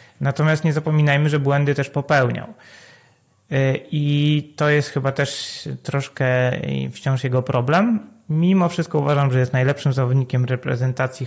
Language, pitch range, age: Polish, 125-145 Hz, 30-49